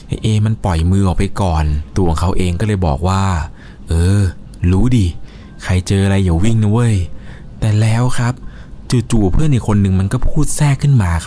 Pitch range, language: 90-125 Hz, Thai